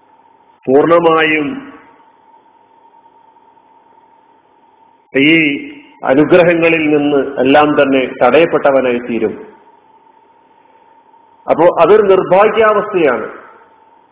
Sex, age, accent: male, 50-69, native